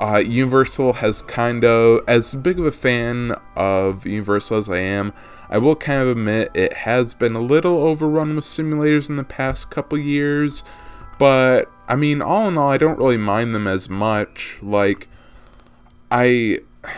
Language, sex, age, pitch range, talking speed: English, male, 20-39, 100-125 Hz, 170 wpm